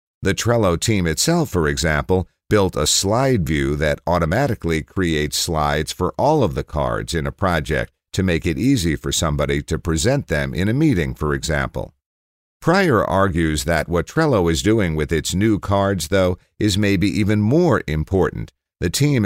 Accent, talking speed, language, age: American, 170 wpm, English, 50-69